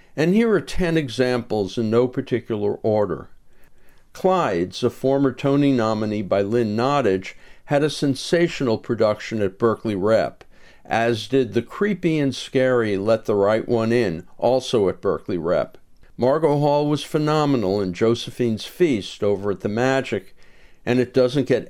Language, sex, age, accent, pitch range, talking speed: English, male, 60-79, American, 105-135 Hz, 150 wpm